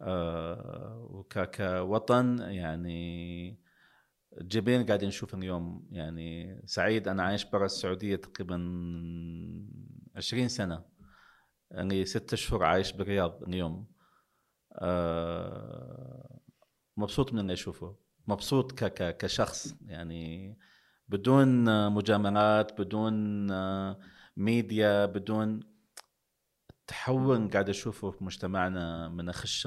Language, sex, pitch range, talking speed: Arabic, male, 90-110 Hz, 85 wpm